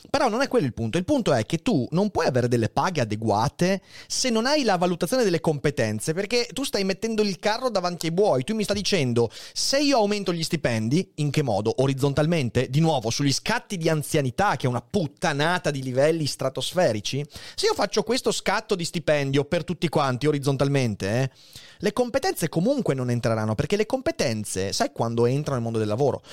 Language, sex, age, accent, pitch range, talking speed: Italian, male, 30-49, native, 135-210 Hz, 195 wpm